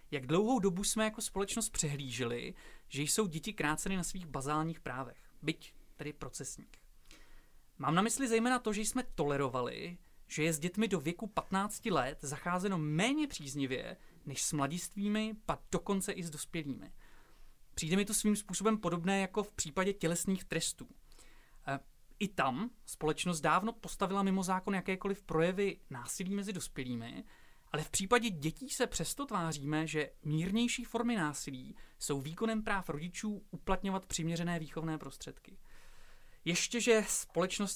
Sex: male